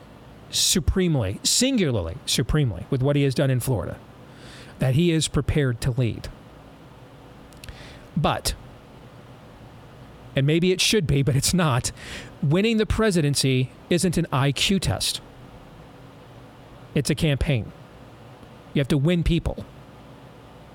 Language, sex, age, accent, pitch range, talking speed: English, male, 40-59, American, 125-150 Hz, 115 wpm